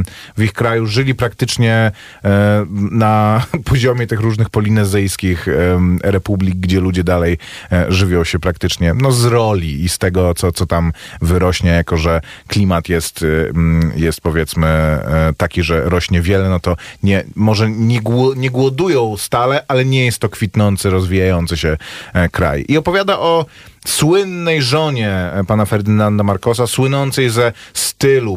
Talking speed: 130 wpm